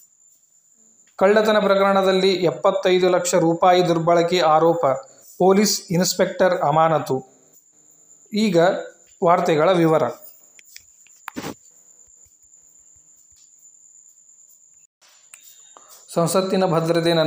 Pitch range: 155-180 Hz